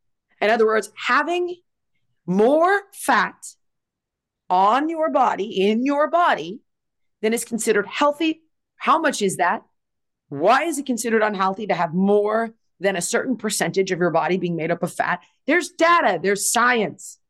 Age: 30-49